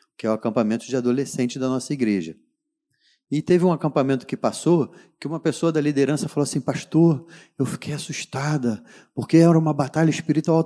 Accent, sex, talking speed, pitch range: Brazilian, male, 175 wpm, 135-180 Hz